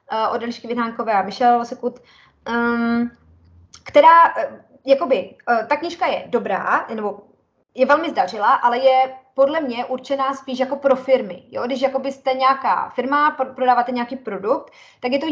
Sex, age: female, 20-39